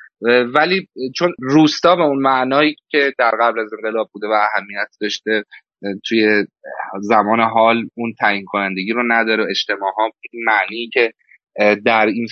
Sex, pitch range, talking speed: male, 110-140 Hz, 140 wpm